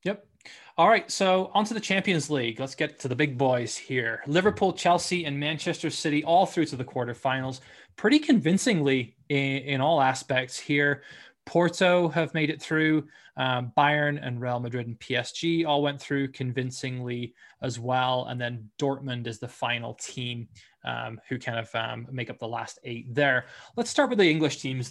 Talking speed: 180 wpm